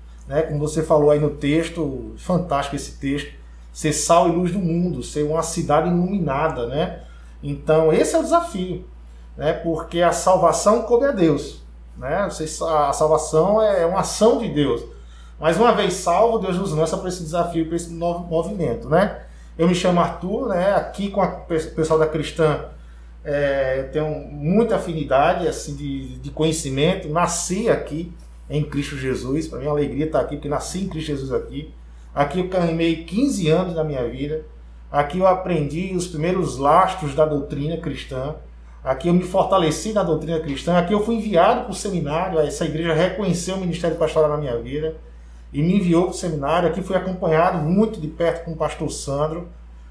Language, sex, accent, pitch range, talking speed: Portuguese, male, Brazilian, 145-180 Hz, 175 wpm